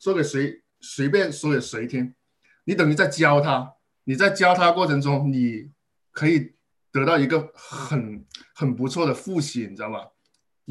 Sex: male